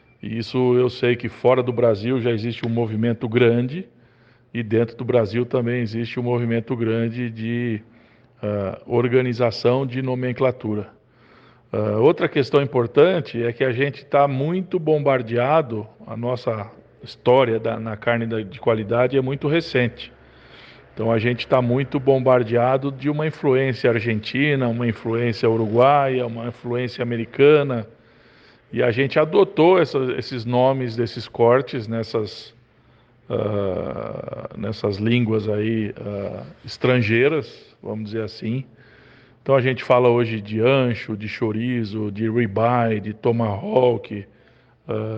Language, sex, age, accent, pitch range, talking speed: Portuguese, male, 50-69, Brazilian, 115-130 Hz, 120 wpm